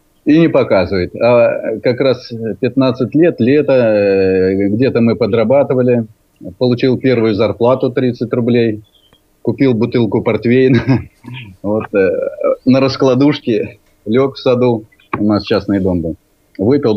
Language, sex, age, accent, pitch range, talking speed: Russian, male, 30-49, native, 105-130 Hz, 110 wpm